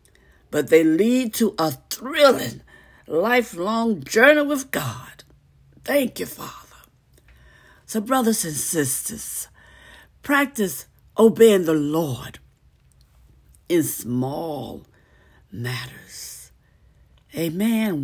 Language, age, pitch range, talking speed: English, 60-79, 145-240 Hz, 85 wpm